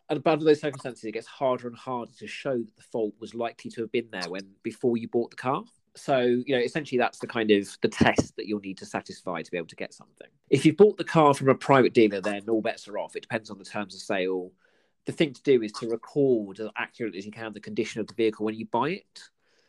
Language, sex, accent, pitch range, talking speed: English, male, British, 105-135 Hz, 270 wpm